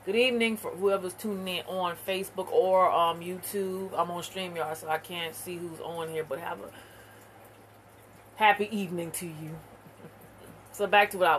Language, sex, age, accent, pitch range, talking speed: English, female, 30-49, American, 170-210 Hz, 175 wpm